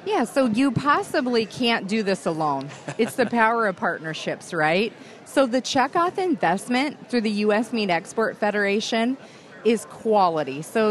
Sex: female